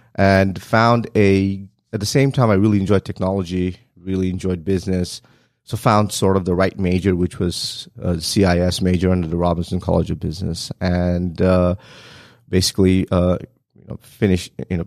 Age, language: 30-49, English